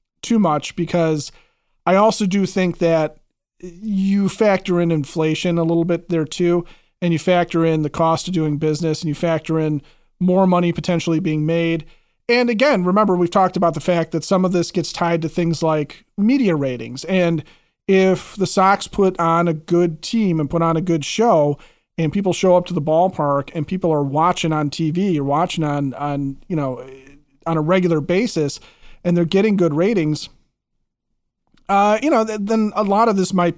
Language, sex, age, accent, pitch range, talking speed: English, male, 40-59, American, 160-190 Hz, 190 wpm